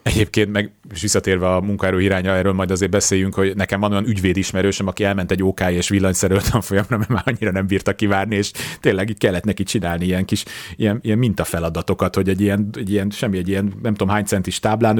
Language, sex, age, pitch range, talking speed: Hungarian, male, 30-49, 95-115 Hz, 210 wpm